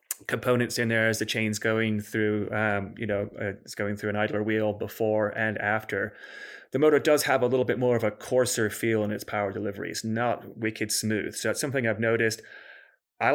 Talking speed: 210 wpm